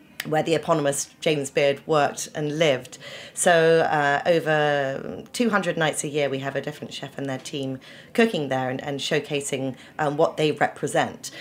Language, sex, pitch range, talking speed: English, female, 145-170 Hz, 170 wpm